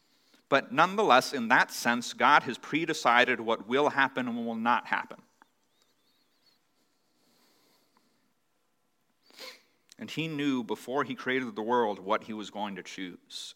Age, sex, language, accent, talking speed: 40-59, male, English, American, 135 wpm